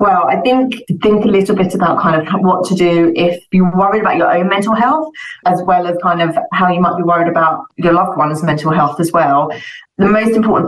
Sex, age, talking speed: female, 30-49, 235 wpm